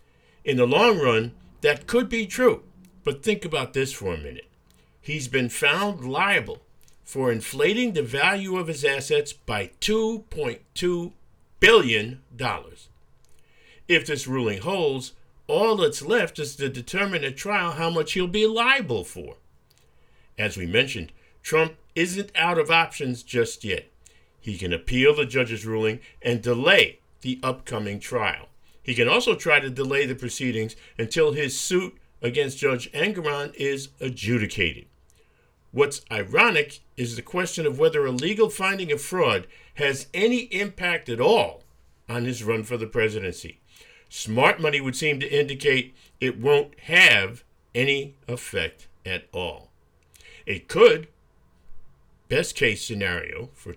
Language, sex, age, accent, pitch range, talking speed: English, male, 50-69, American, 125-185 Hz, 140 wpm